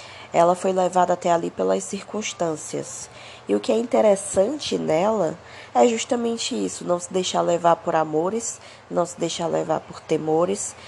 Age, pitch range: 20-39, 160-190 Hz